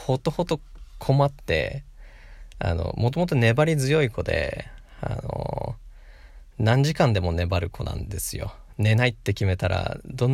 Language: Japanese